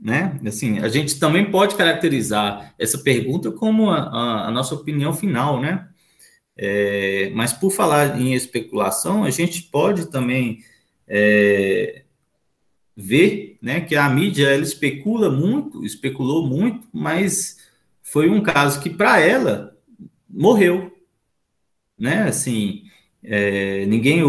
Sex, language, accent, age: male, Portuguese, Brazilian, 20-39